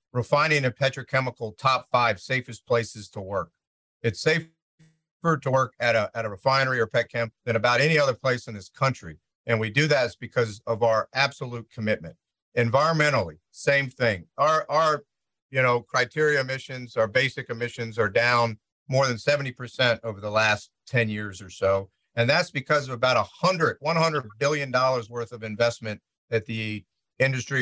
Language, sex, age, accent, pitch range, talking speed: English, male, 50-69, American, 110-140 Hz, 165 wpm